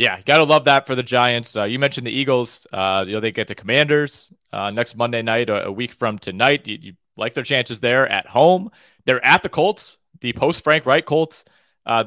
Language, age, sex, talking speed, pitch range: English, 30-49, male, 230 wpm, 120-150 Hz